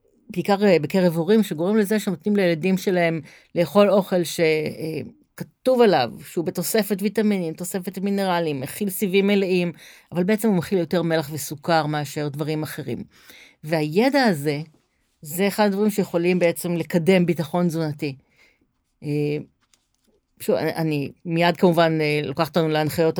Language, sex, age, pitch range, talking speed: Hebrew, female, 40-59, 160-195 Hz, 125 wpm